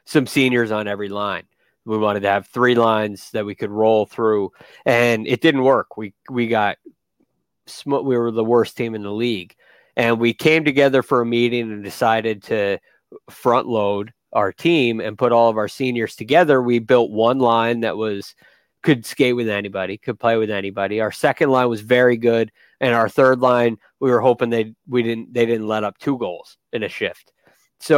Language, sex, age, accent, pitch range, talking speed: English, male, 30-49, American, 105-125 Hz, 195 wpm